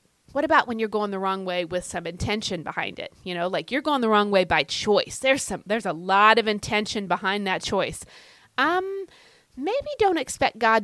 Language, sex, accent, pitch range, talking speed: English, female, American, 185-265 Hz, 210 wpm